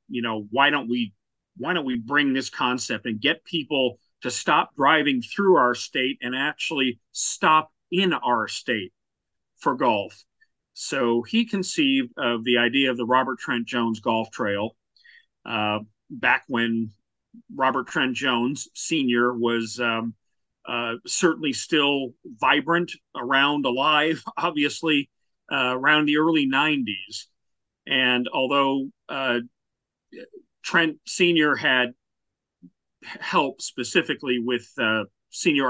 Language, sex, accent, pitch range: English, male, American, 120-170 Hz